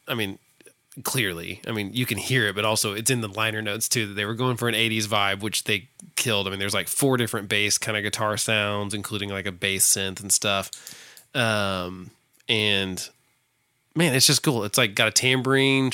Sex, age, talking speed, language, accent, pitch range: male, 20-39, 215 wpm, English, American, 110-145 Hz